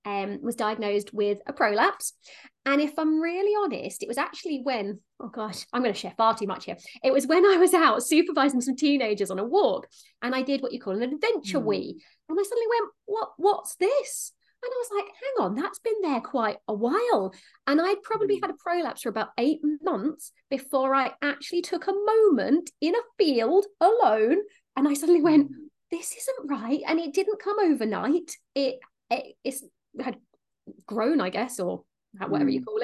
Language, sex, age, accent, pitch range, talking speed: English, female, 30-49, British, 230-350 Hz, 195 wpm